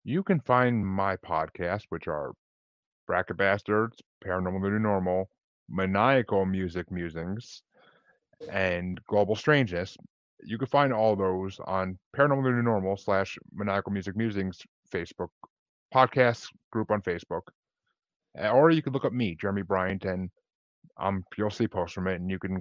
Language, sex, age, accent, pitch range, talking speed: English, male, 20-39, American, 95-110 Hz, 145 wpm